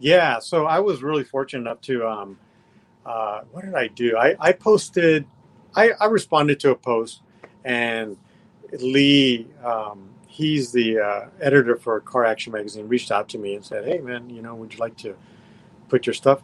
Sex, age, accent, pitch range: male, 40-59, American, 120-170 Hz